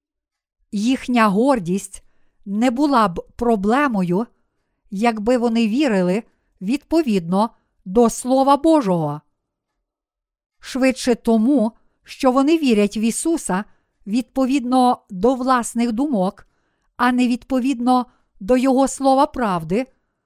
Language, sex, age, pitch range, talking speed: Ukrainian, female, 50-69, 205-265 Hz, 90 wpm